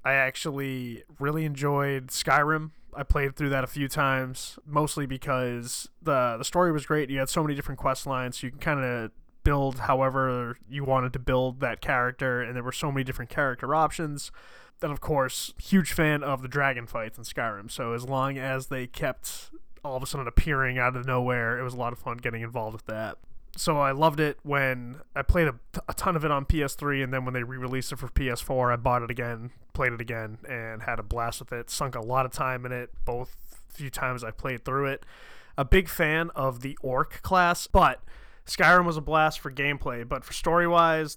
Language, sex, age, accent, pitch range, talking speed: English, male, 20-39, American, 125-150 Hz, 215 wpm